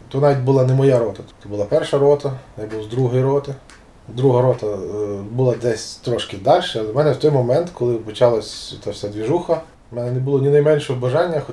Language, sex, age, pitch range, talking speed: Ukrainian, male, 20-39, 115-145 Hz, 205 wpm